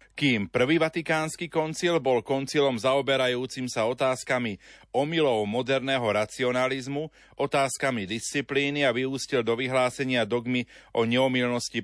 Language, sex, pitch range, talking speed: Slovak, male, 115-135 Hz, 105 wpm